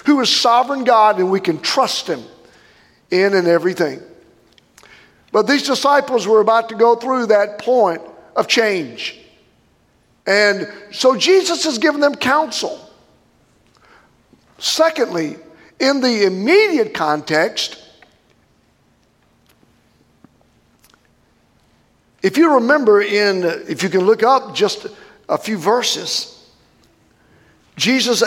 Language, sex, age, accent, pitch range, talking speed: English, male, 50-69, American, 220-310 Hz, 105 wpm